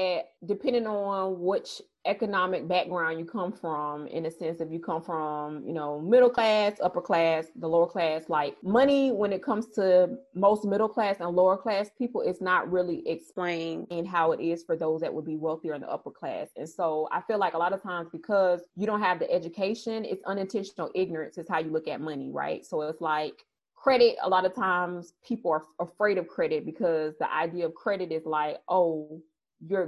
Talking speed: 205 wpm